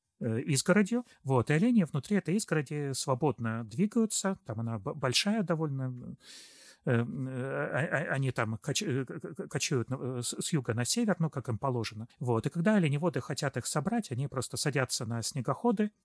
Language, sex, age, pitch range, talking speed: Russian, male, 30-49, 120-160 Hz, 135 wpm